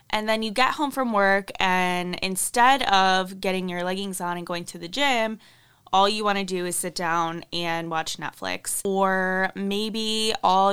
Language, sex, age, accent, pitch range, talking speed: English, female, 20-39, American, 170-215 Hz, 185 wpm